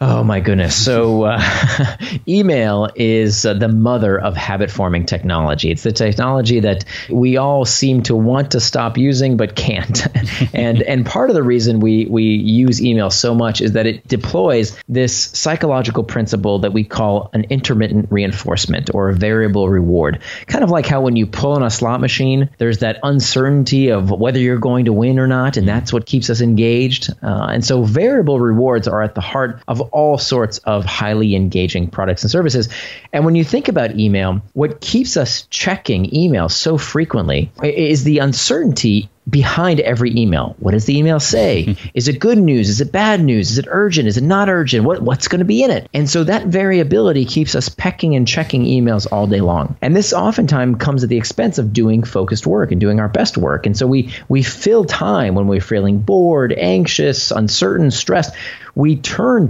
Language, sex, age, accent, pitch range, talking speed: English, male, 30-49, American, 105-140 Hz, 195 wpm